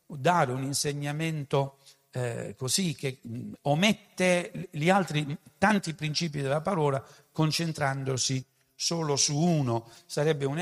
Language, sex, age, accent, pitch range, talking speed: Italian, male, 60-79, native, 135-190 Hz, 105 wpm